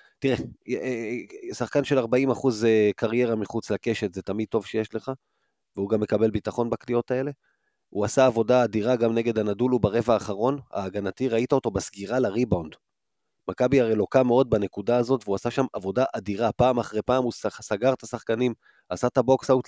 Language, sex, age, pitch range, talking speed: Hebrew, male, 30-49, 105-130 Hz, 160 wpm